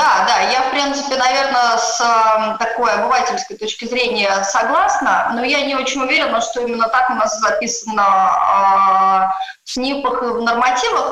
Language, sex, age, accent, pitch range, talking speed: Russian, female, 20-39, native, 215-260 Hz, 155 wpm